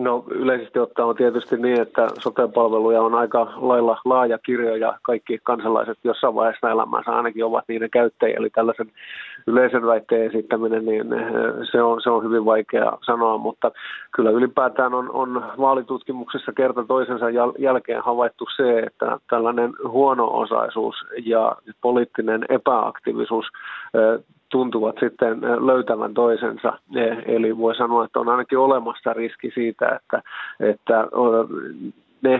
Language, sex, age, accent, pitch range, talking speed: Finnish, male, 30-49, native, 115-125 Hz, 125 wpm